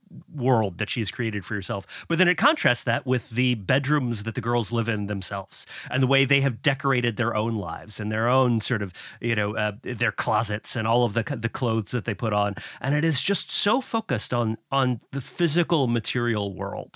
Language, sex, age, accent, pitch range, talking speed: English, male, 30-49, American, 110-145 Hz, 215 wpm